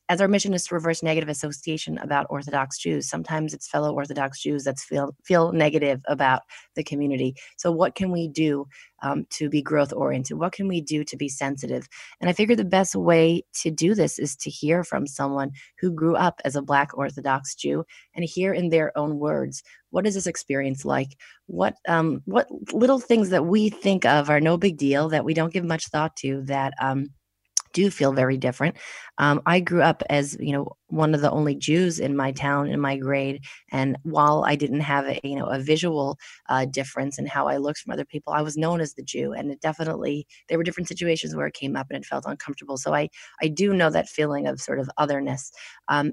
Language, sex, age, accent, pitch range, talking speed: English, female, 30-49, American, 140-165 Hz, 220 wpm